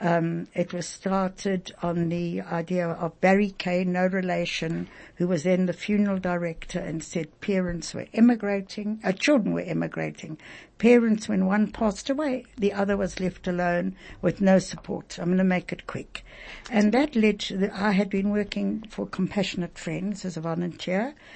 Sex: female